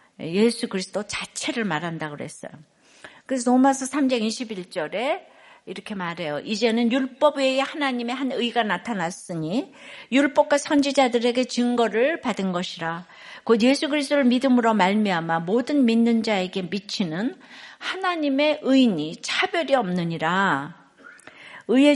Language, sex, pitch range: Korean, female, 210-280 Hz